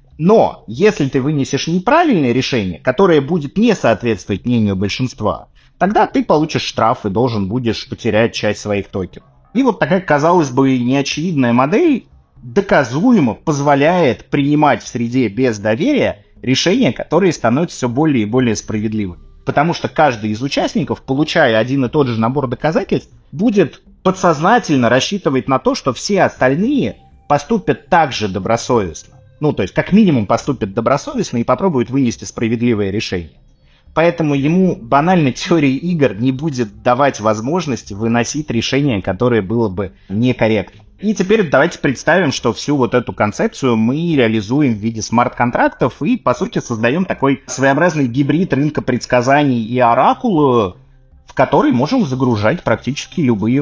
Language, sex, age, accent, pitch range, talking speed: Russian, male, 30-49, native, 115-150 Hz, 140 wpm